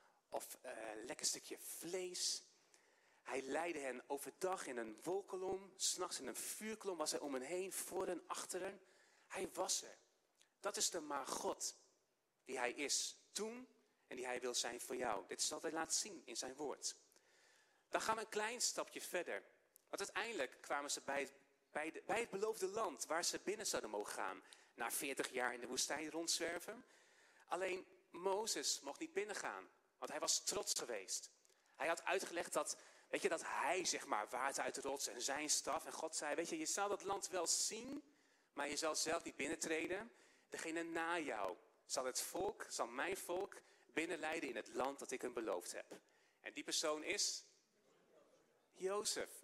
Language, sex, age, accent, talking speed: Dutch, male, 40-59, Dutch, 180 wpm